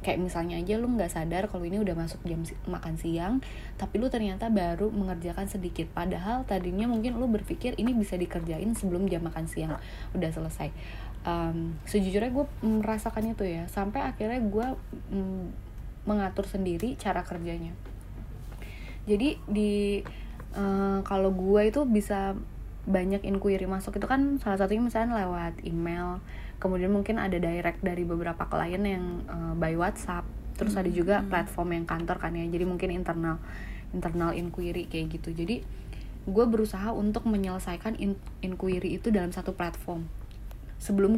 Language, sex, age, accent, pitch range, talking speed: Indonesian, female, 20-39, native, 170-205 Hz, 150 wpm